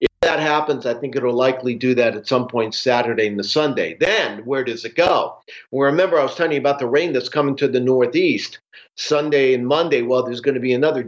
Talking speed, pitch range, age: 225 wpm, 125-155 Hz, 50-69